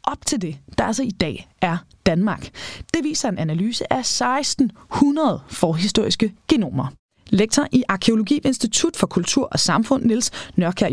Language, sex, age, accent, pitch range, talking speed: Danish, female, 20-39, native, 190-260 Hz, 155 wpm